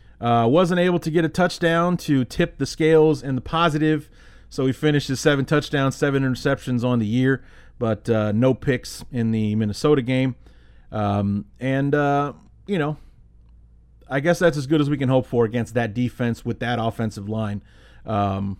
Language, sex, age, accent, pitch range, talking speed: English, male, 30-49, American, 115-145 Hz, 180 wpm